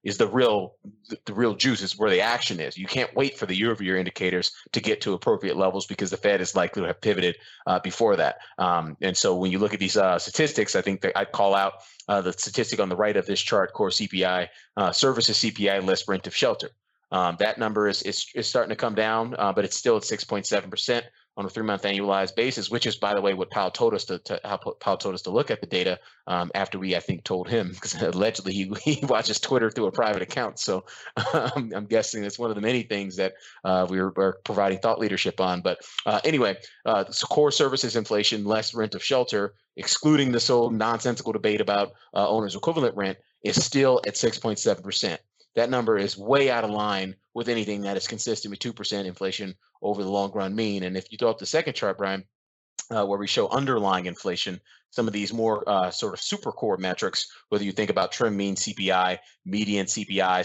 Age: 30-49